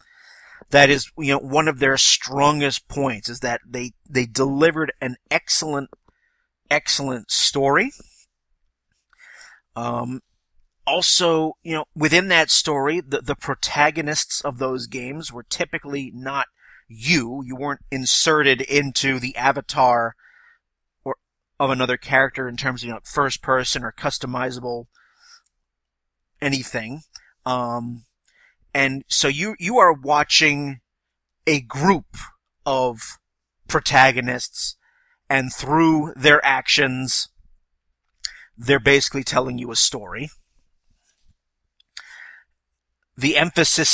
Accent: American